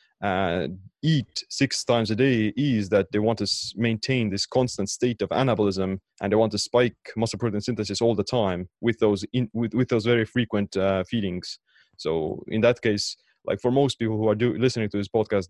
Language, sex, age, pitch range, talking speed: English, male, 20-39, 100-120 Hz, 210 wpm